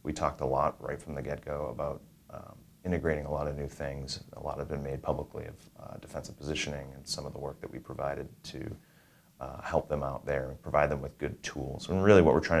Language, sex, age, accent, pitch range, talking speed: English, male, 30-49, American, 75-85 Hz, 245 wpm